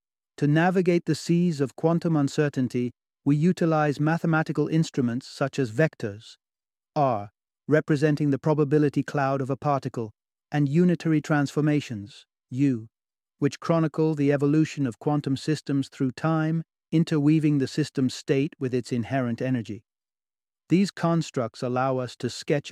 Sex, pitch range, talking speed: male, 125-150 Hz, 130 wpm